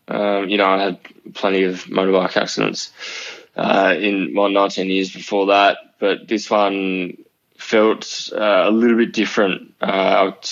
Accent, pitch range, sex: Australian, 95-105 Hz, male